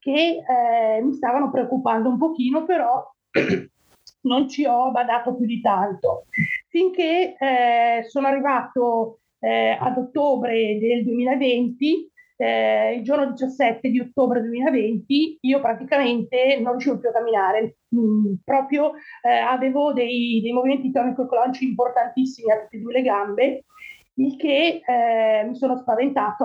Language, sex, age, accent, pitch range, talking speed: Italian, female, 30-49, native, 235-275 Hz, 135 wpm